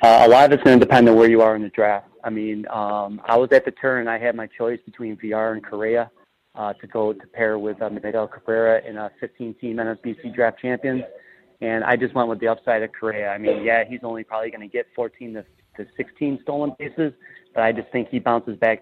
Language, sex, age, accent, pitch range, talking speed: English, male, 30-49, American, 110-125 Hz, 250 wpm